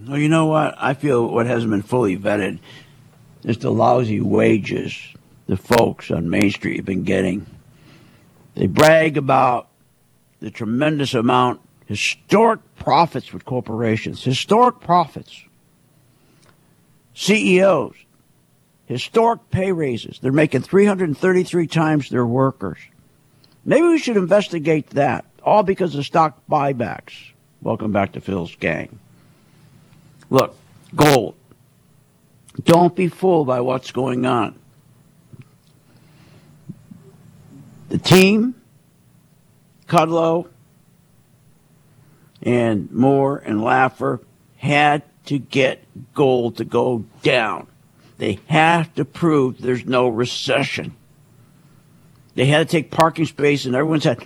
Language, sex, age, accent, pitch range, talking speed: English, male, 60-79, American, 125-160 Hz, 110 wpm